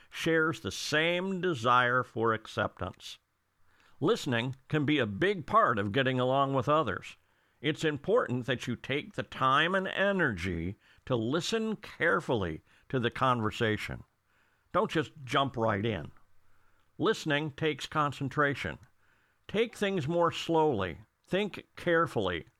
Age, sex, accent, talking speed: 50-69, male, American, 120 wpm